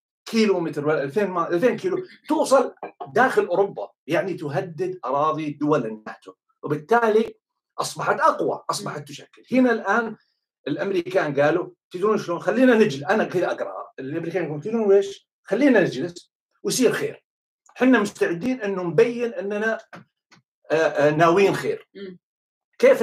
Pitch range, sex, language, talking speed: 165-225 Hz, male, Arabic, 120 wpm